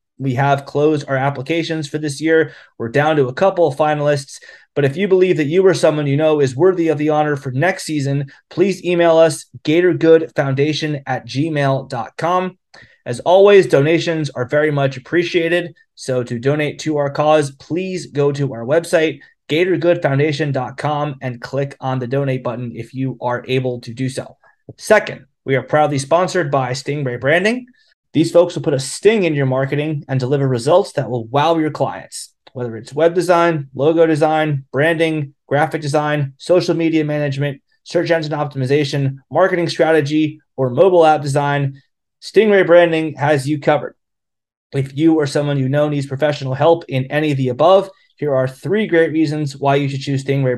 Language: English